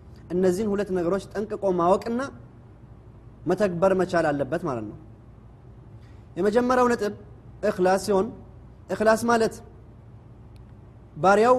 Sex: male